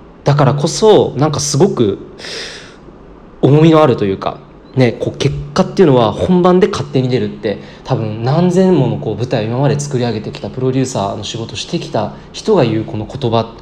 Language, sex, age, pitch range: Japanese, male, 20-39, 115-180 Hz